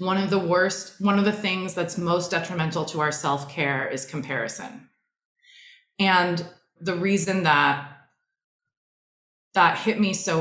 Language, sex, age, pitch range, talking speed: English, female, 20-39, 165-205 Hz, 140 wpm